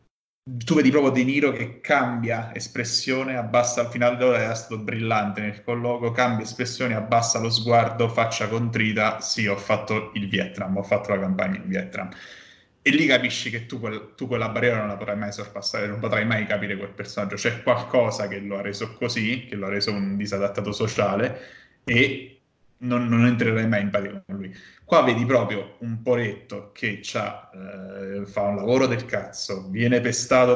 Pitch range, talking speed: 105-120 Hz, 185 wpm